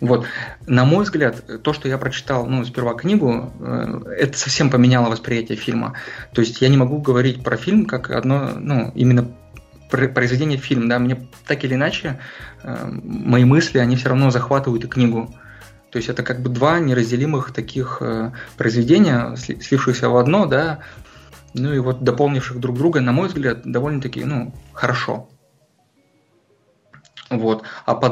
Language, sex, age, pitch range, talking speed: Russian, male, 20-39, 120-135 Hz, 150 wpm